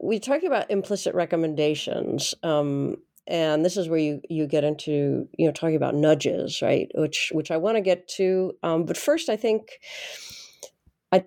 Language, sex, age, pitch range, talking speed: English, female, 50-69, 150-185 Hz, 175 wpm